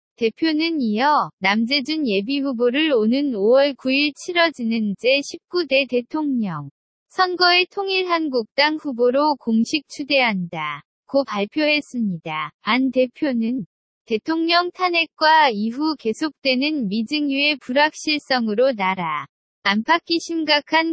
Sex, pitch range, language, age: female, 225-310 Hz, Korean, 20-39